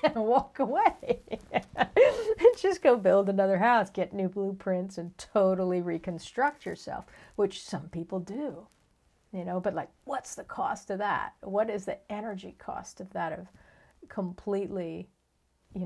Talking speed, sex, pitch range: 150 wpm, female, 170-200 Hz